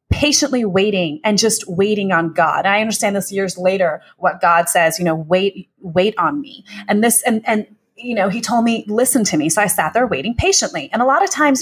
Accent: American